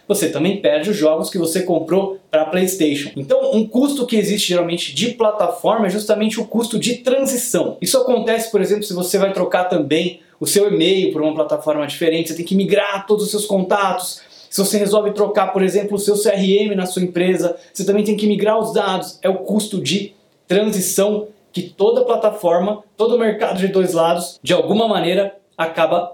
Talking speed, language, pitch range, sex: 195 wpm, Portuguese, 180-235 Hz, male